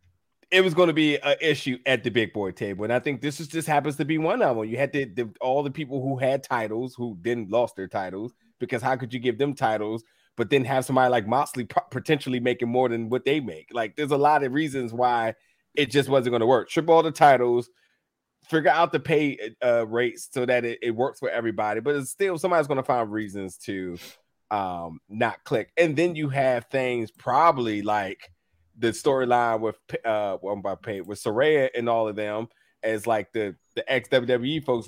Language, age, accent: English, 30-49, American